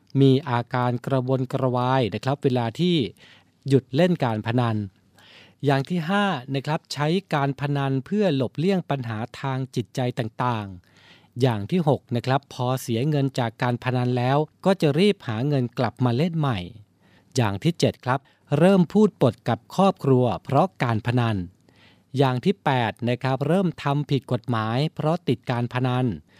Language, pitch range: Thai, 115-145 Hz